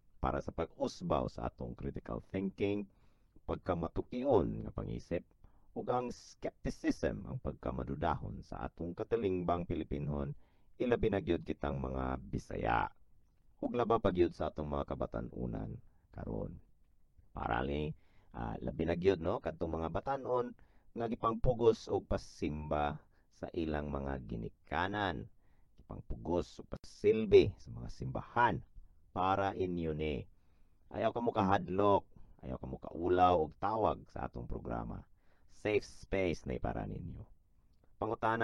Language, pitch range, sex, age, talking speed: English, 70-100 Hz, male, 50-69, 115 wpm